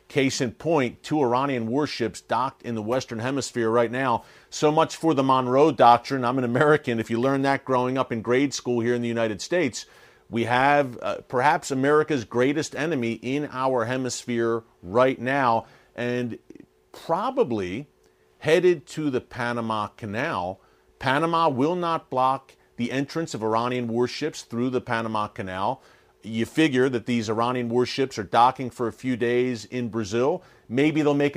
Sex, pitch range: male, 115-145 Hz